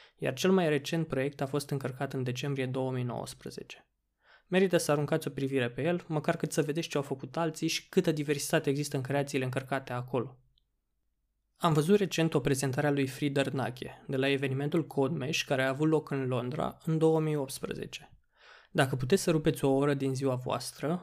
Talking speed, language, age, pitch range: 185 wpm, Romanian, 20-39, 135-160 Hz